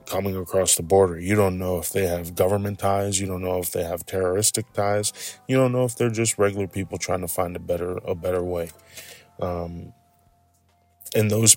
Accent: American